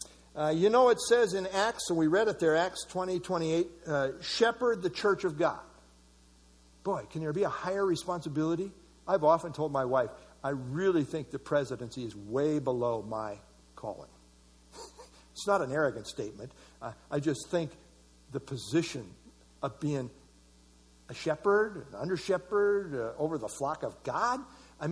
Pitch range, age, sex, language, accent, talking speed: 135-200 Hz, 60-79, male, English, American, 160 wpm